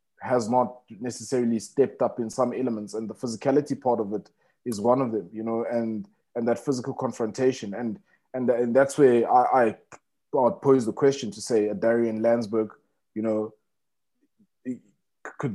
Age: 20-39